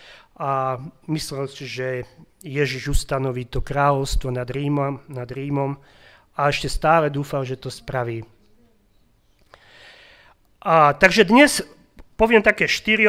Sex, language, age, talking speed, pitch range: male, Slovak, 30-49, 105 wpm, 135-175 Hz